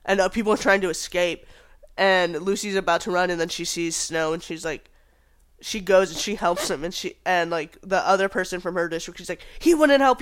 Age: 20-39